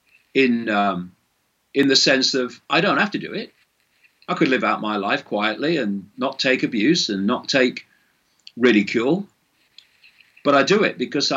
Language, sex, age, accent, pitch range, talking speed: English, male, 50-69, British, 130-200 Hz, 170 wpm